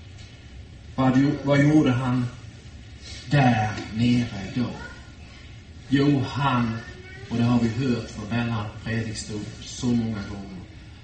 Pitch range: 105-130 Hz